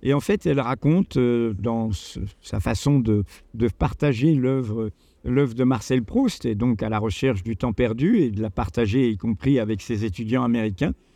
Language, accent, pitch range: French, French, 110-140 Hz